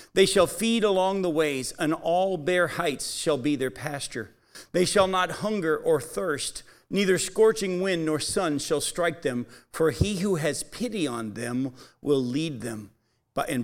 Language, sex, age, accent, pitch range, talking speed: English, male, 50-69, American, 130-180 Hz, 170 wpm